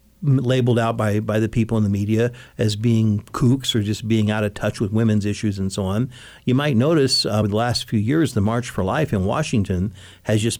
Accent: American